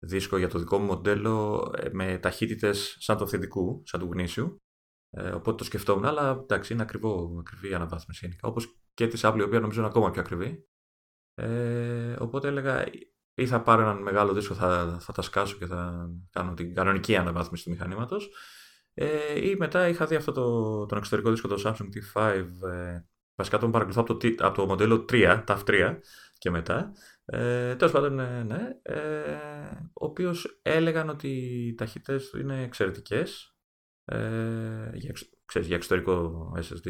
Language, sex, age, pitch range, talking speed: Greek, male, 30-49, 90-120 Hz, 170 wpm